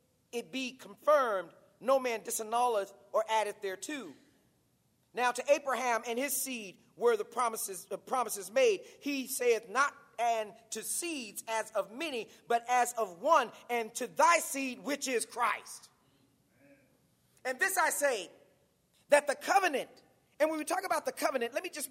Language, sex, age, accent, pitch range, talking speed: English, male, 40-59, American, 240-310 Hz, 155 wpm